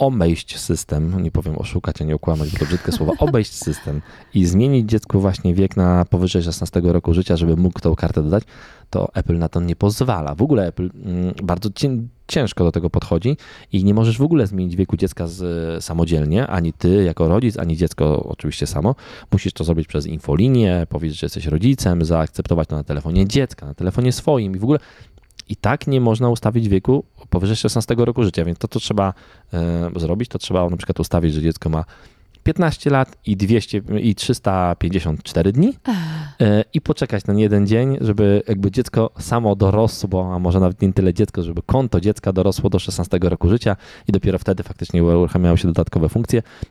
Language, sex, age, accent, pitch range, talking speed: Polish, male, 20-39, native, 85-115 Hz, 185 wpm